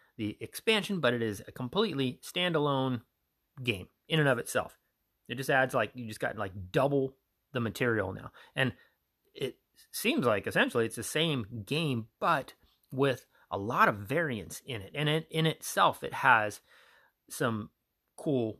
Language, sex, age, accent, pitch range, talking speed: English, male, 30-49, American, 105-145 Hz, 160 wpm